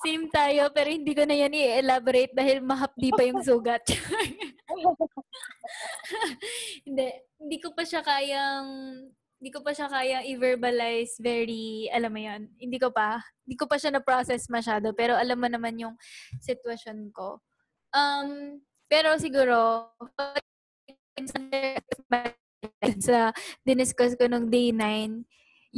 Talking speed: 130 wpm